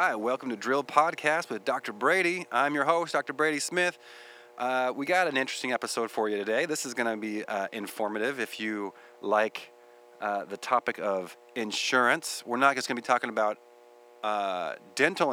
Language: English